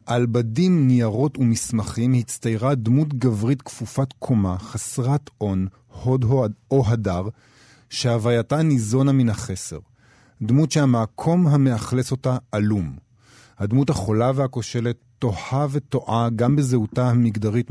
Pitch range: 110-135 Hz